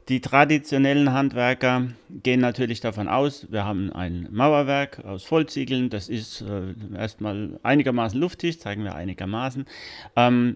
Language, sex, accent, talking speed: German, male, German, 130 wpm